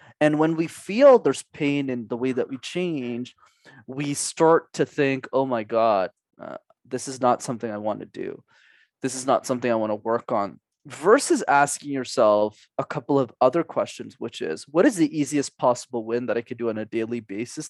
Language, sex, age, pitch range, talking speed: English, male, 20-39, 120-160 Hz, 205 wpm